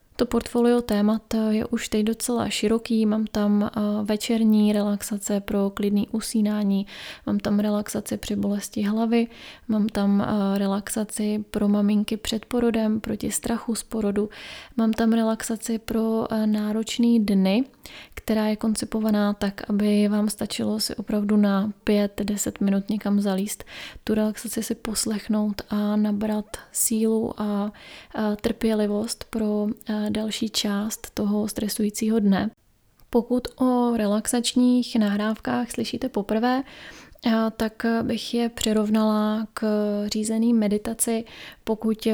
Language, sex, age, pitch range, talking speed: Czech, female, 20-39, 205-225 Hz, 115 wpm